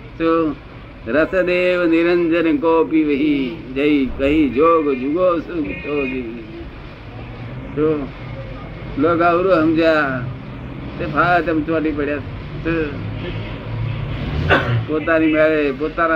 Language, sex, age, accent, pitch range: Gujarati, male, 50-69, native, 135-165 Hz